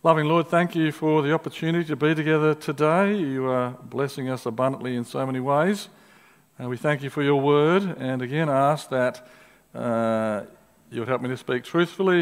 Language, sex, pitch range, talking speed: English, male, 125-170 Hz, 195 wpm